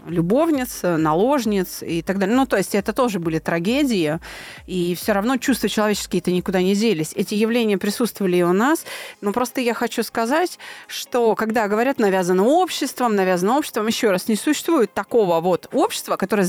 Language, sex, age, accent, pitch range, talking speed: Russian, female, 30-49, native, 185-240 Hz, 165 wpm